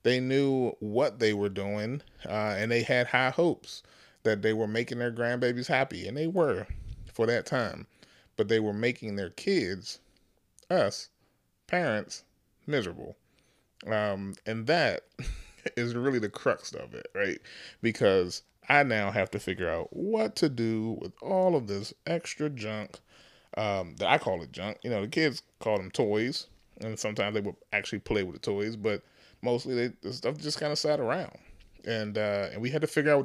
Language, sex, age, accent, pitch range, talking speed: English, male, 30-49, American, 100-125 Hz, 180 wpm